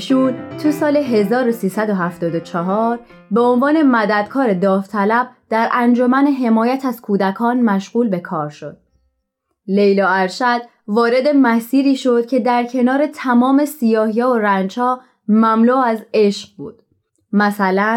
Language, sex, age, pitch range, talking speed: Persian, female, 20-39, 185-245 Hz, 110 wpm